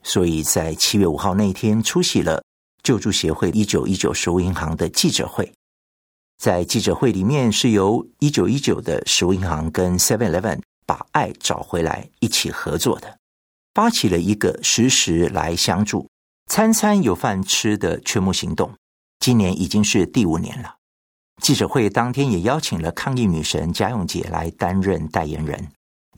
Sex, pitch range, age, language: male, 80-110 Hz, 50-69, Chinese